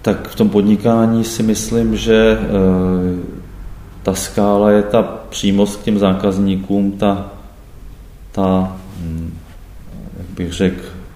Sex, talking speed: male, 110 wpm